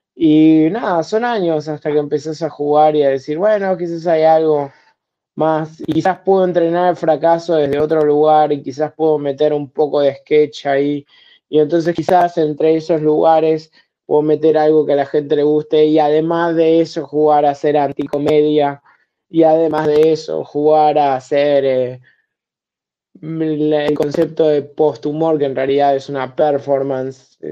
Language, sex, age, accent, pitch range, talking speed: Spanish, male, 20-39, Argentinian, 150-165 Hz, 165 wpm